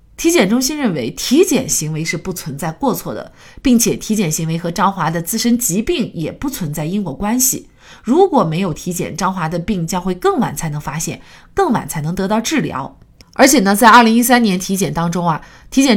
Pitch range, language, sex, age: 170-240 Hz, Chinese, female, 30-49